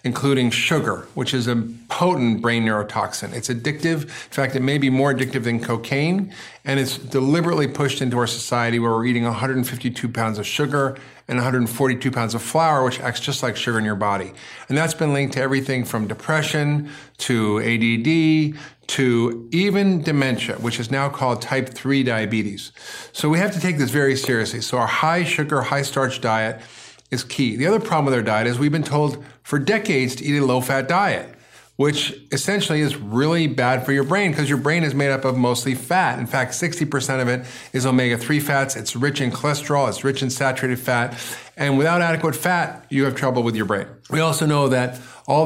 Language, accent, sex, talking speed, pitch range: English, American, male, 195 wpm, 120-145 Hz